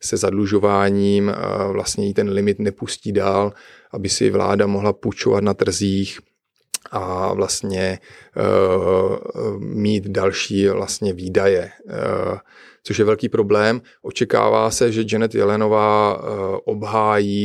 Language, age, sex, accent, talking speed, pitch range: Czech, 30-49, male, native, 115 wpm, 100-110 Hz